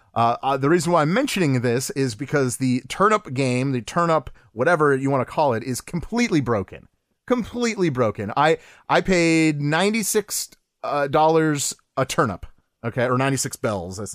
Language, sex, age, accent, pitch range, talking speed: English, male, 30-49, American, 125-165 Hz, 175 wpm